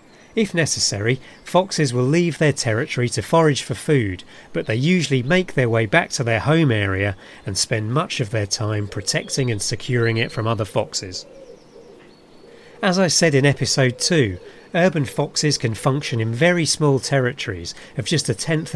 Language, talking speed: English, 170 wpm